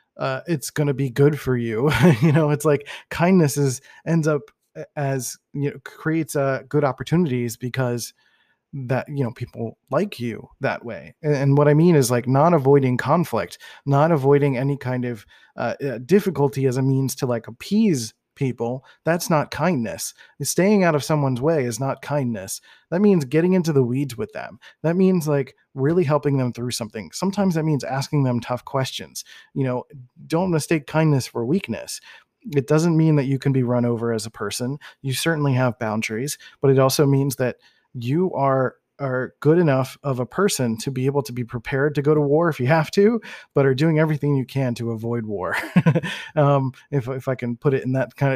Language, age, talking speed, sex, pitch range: English, 20-39, 195 wpm, male, 125-155 Hz